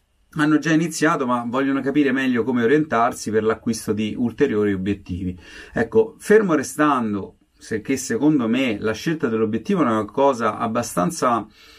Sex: male